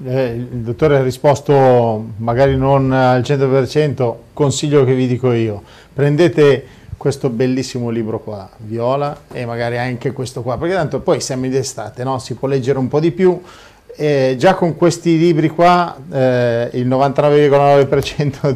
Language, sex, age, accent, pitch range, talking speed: Italian, male, 40-59, native, 120-140 Hz, 150 wpm